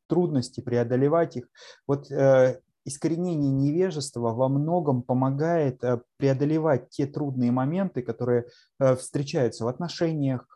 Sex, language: male, Russian